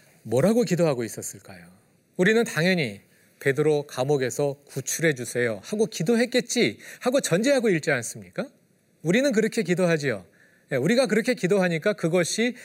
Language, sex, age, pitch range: Korean, male, 40-59, 130-205 Hz